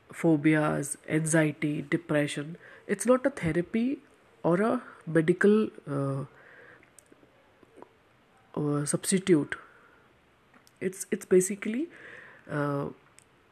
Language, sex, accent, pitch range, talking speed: English, female, Indian, 155-205 Hz, 75 wpm